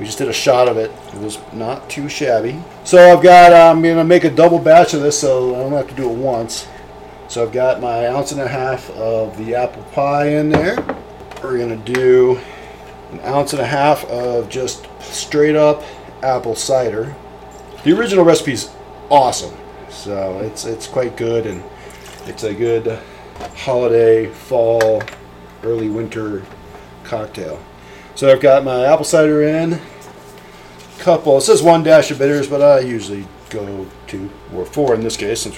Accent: American